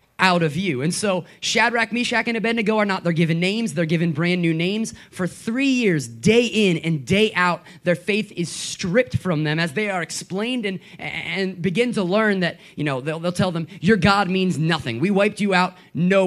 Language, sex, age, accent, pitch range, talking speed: English, male, 20-39, American, 165-215 Hz, 215 wpm